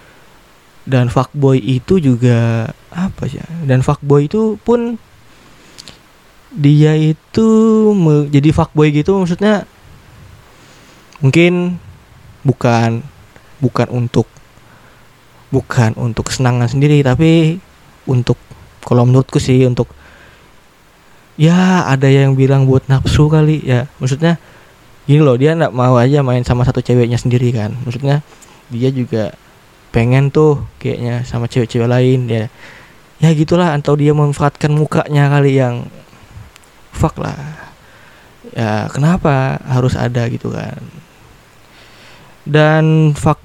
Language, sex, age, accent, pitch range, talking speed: Indonesian, male, 20-39, native, 120-150 Hz, 110 wpm